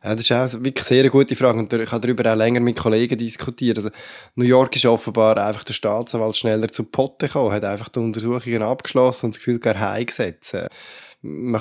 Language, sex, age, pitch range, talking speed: German, male, 20-39, 110-130 Hz, 210 wpm